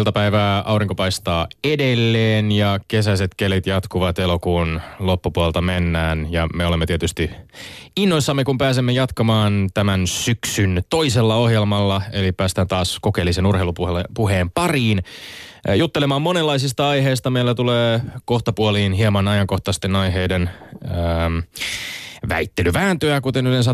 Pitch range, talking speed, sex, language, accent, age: 95-125 Hz, 105 wpm, male, Finnish, native, 20-39